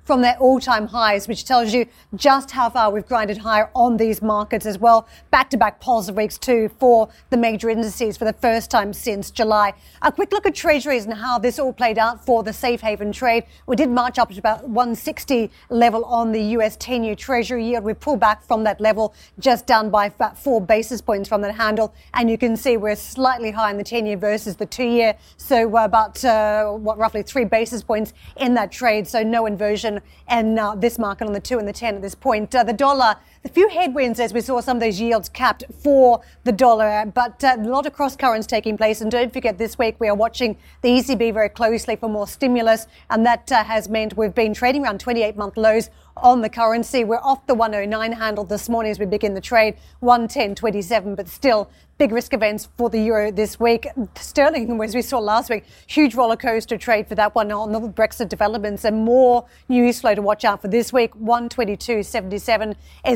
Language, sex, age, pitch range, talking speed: English, female, 40-59, 215-245 Hz, 215 wpm